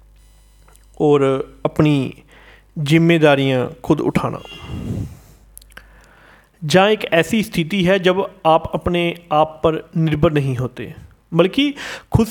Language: Hindi